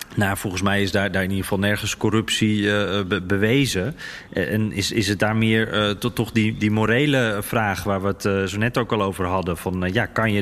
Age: 30-49